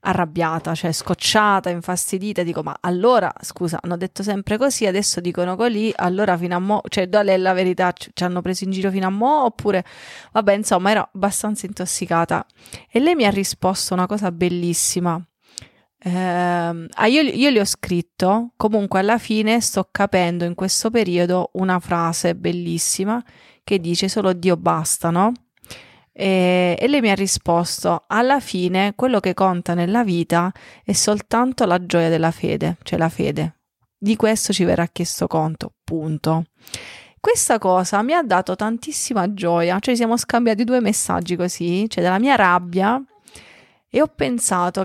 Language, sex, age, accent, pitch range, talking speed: Italian, female, 30-49, native, 175-215 Hz, 155 wpm